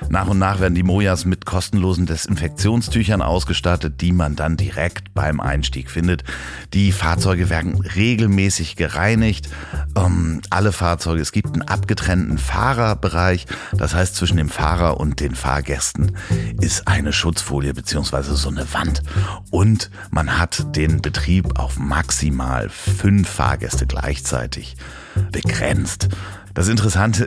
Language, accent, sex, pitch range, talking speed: German, German, male, 75-95 Hz, 130 wpm